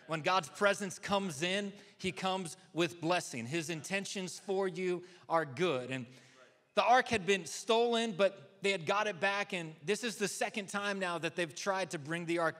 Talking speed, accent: 195 wpm, American